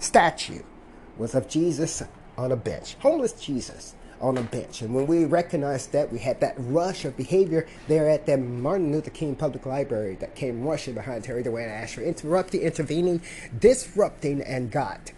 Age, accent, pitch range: 30-49, American, 135-175 Hz